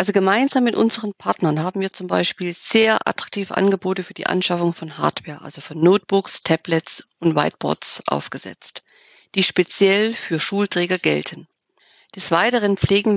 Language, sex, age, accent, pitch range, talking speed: German, female, 50-69, German, 170-215 Hz, 145 wpm